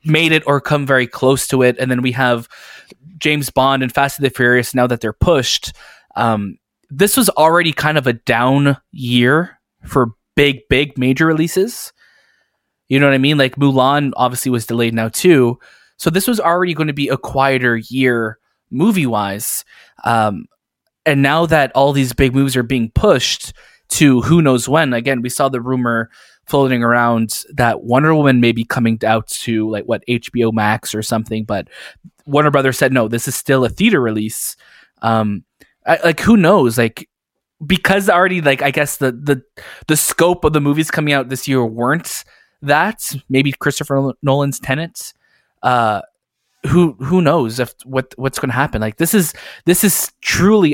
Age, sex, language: 20-39, male, English